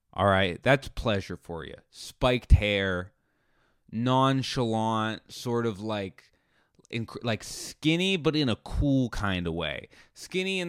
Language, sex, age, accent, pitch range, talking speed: English, male, 20-39, American, 90-125 Hz, 130 wpm